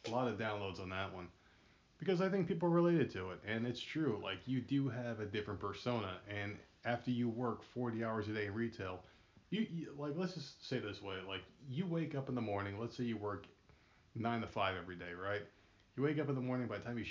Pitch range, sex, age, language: 100-125 Hz, male, 30-49, English